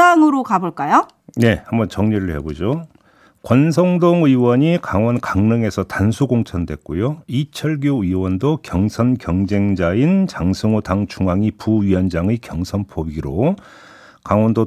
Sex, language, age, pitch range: male, Korean, 50-69, 90-140 Hz